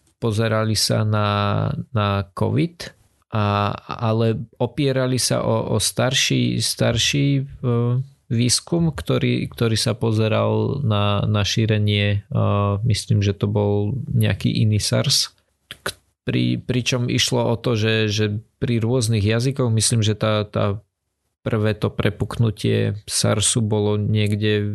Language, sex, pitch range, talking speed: Slovak, male, 105-120 Hz, 115 wpm